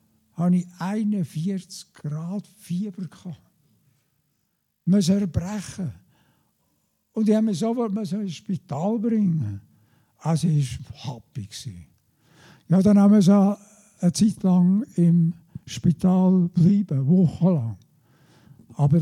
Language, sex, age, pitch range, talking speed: German, male, 60-79, 135-190 Hz, 100 wpm